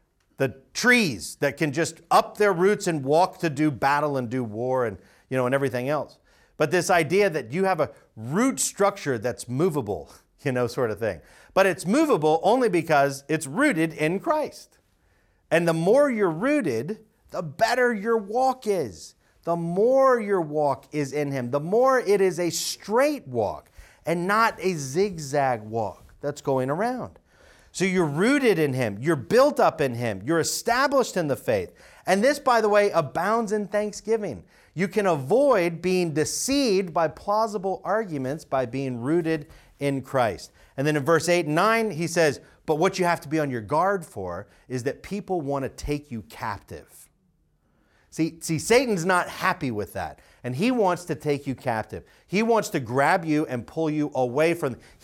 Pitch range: 140-205 Hz